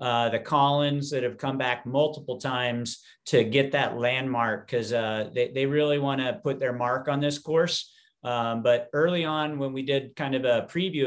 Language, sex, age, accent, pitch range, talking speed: English, male, 40-59, American, 125-140 Hz, 200 wpm